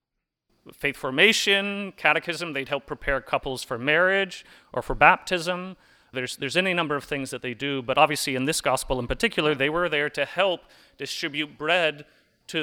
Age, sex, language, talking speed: 30-49, male, English, 170 wpm